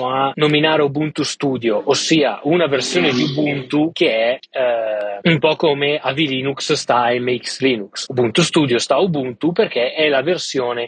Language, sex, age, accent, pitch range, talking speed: Italian, male, 20-39, native, 125-160 Hz, 155 wpm